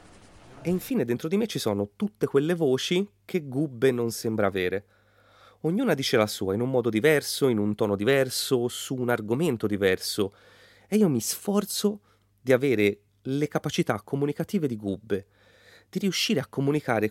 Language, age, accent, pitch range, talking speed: Italian, 30-49, native, 100-140 Hz, 160 wpm